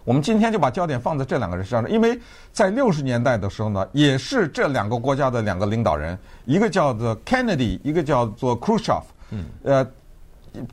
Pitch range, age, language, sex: 110-165 Hz, 50-69, Chinese, male